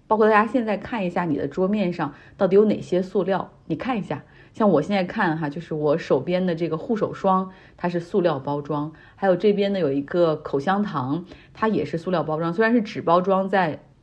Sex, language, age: female, Chinese, 30-49